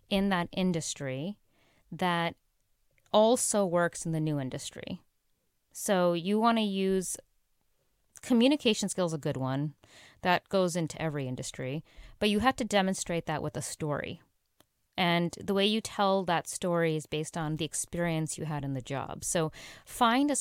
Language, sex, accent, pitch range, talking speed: English, female, American, 150-195 Hz, 160 wpm